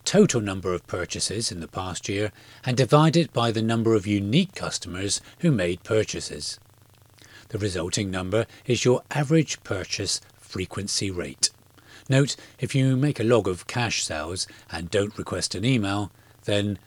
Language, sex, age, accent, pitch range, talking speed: English, male, 40-59, British, 100-120 Hz, 155 wpm